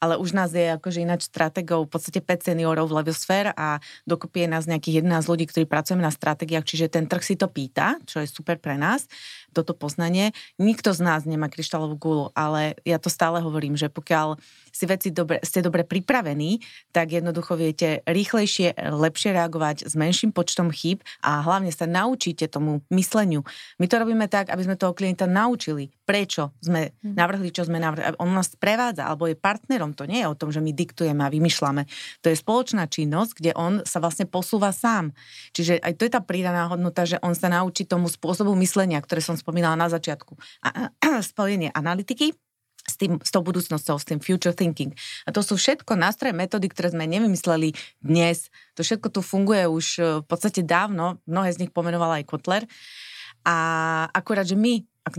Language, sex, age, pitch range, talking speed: Slovak, female, 30-49, 160-185 Hz, 190 wpm